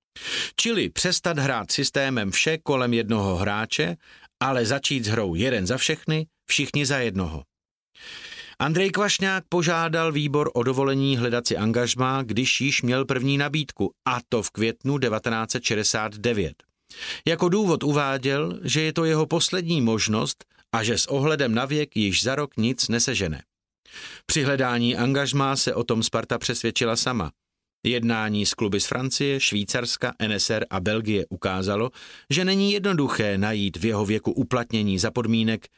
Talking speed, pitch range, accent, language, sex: 145 wpm, 115-150 Hz, native, Czech, male